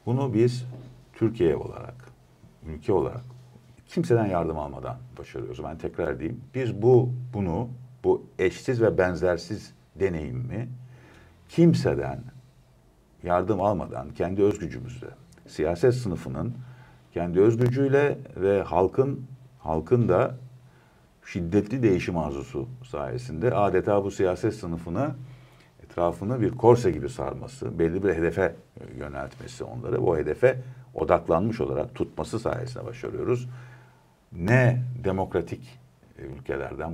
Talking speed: 100 wpm